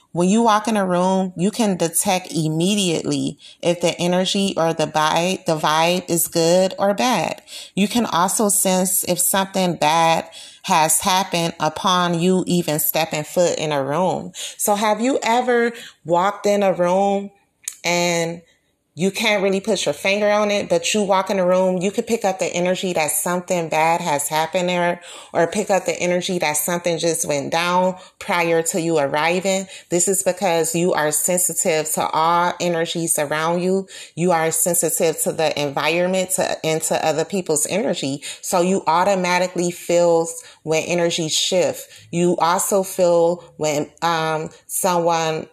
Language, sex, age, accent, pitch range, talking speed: English, female, 30-49, American, 160-190 Hz, 160 wpm